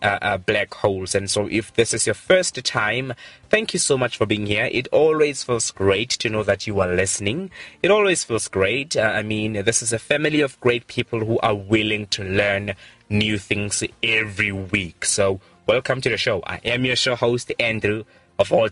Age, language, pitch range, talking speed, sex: 20-39, English, 105-160 Hz, 210 wpm, male